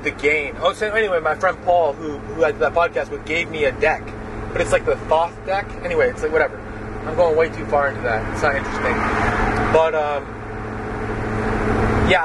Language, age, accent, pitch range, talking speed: English, 20-39, American, 110-160 Hz, 200 wpm